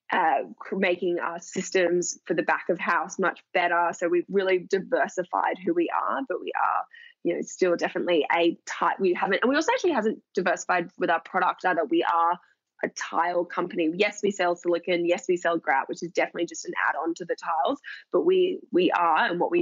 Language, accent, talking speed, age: English, Australian, 210 wpm, 10-29